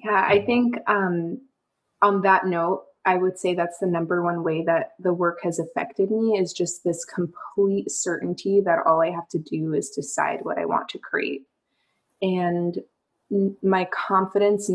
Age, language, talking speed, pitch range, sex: 20-39, English, 170 wpm, 170-195 Hz, female